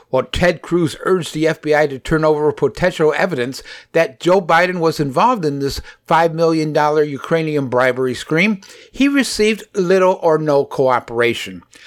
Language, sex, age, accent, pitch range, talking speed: English, male, 60-79, American, 140-180 Hz, 145 wpm